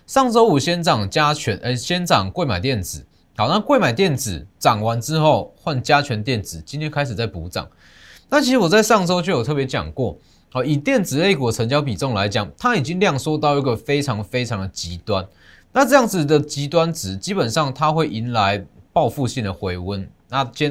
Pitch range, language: 105-165 Hz, Chinese